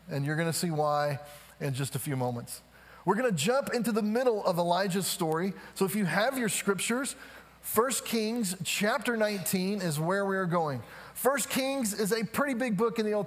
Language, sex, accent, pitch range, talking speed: English, male, American, 180-235 Hz, 205 wpm